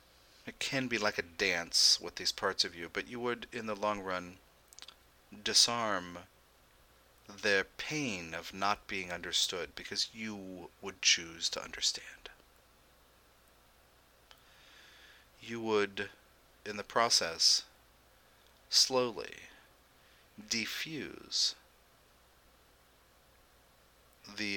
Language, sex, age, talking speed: English, male, 40-59, 95 wpm